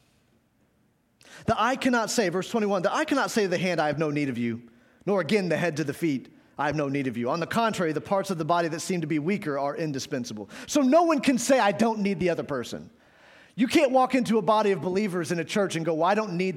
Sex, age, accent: male, 40-59, American